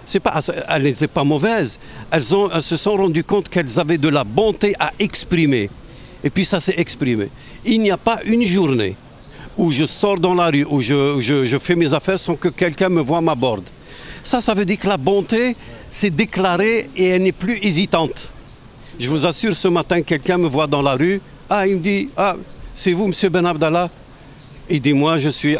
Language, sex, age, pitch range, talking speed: French, male, 60-79, 140-180 Hz, 210 wpm